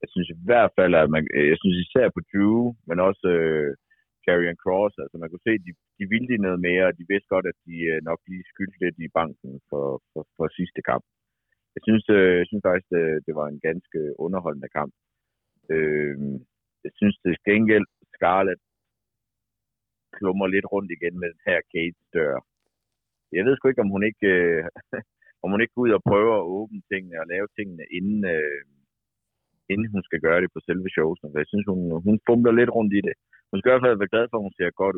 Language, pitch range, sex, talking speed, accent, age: Danish, 85-110 Hz, male, 215 wpm, native, 60-79